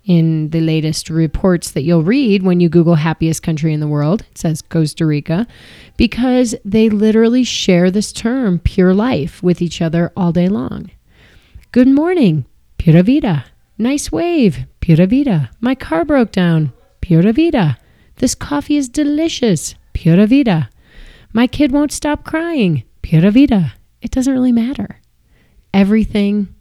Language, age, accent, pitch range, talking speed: English, 30-49, American, 165-220 Hz, 145 wpm